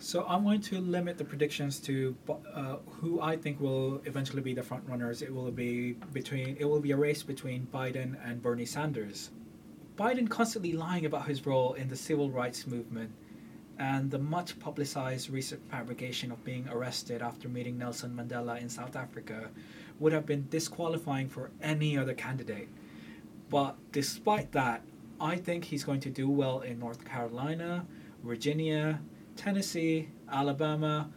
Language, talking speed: English, 160 wpm